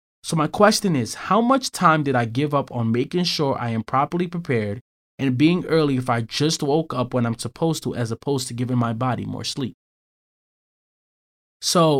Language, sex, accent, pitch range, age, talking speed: English, male, American, 120-155 Hz, 20-39, 195 wpm